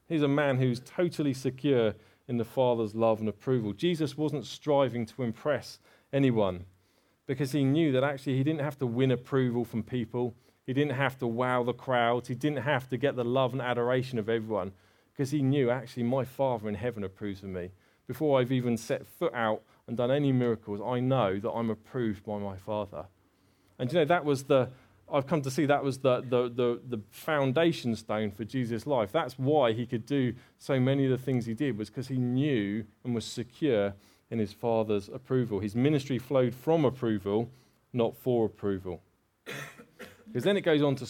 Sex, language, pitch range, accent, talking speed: male, English, 115-140 Hz, British, 200 wpm